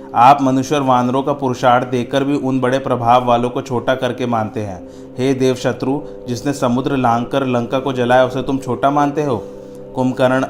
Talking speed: 185 wpm